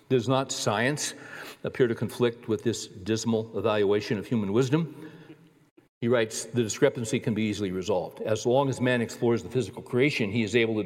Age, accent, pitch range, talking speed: 60-79, American, 115-140 Hz, 180 wpm